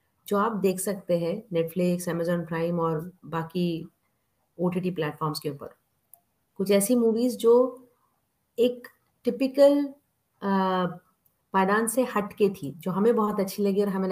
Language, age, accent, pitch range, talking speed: Hindi, 30-49, native, 175-235 Hz, 140 wpm